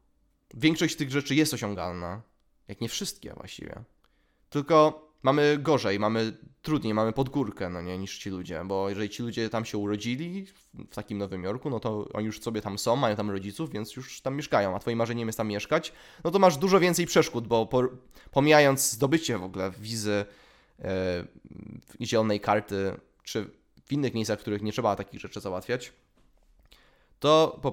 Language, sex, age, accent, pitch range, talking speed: Polish, male, 20-39, native, 105-150 Hz, 170 wpm